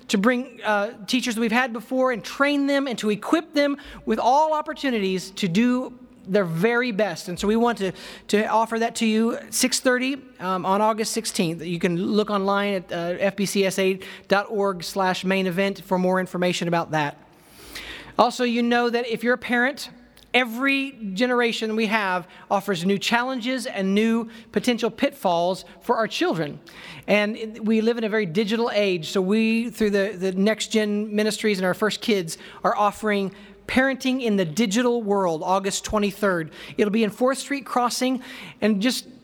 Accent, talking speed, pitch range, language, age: American, 170 wpm, 190-240 Hz, English, 40-59